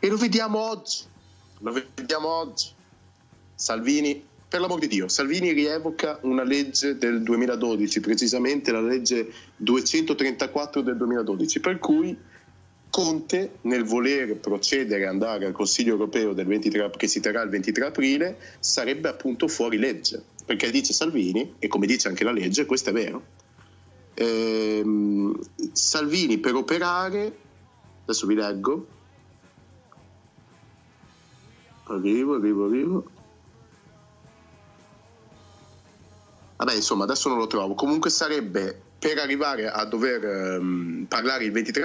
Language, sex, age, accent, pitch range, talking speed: Italian, male, 30-49, native, 105-150 Hz, 120 wpm